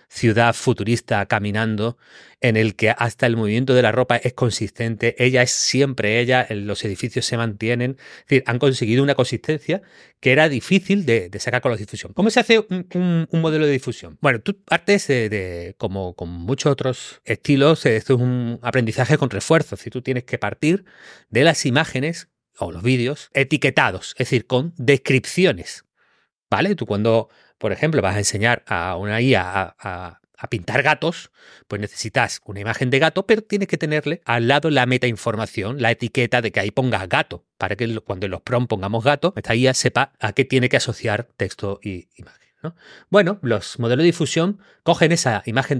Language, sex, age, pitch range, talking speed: Spanish, male, 30-49, 115-150 Hz, 190 wpm